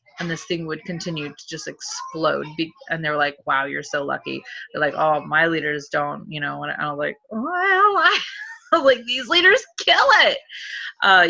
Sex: female